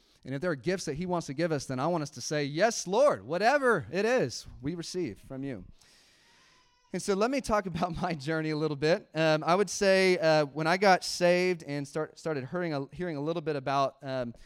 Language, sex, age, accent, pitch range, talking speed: English, male, 30-49, American, 135-165 Hz, 230 wpm